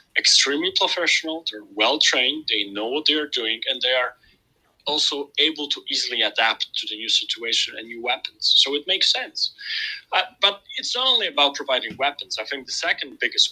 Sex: male